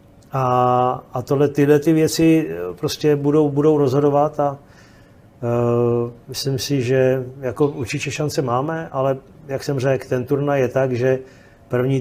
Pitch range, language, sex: 115-135 Hz, Czech, male